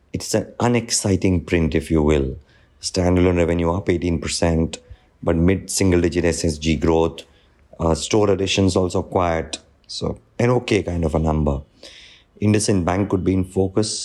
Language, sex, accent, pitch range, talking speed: English, male, Indian, 80-90 Hz, 140 wpm